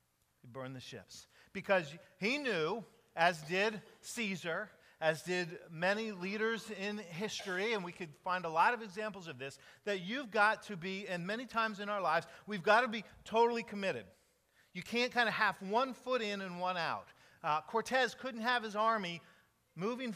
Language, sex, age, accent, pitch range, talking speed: English, male, 40-59, American, 165-225 Hz, 180 wpm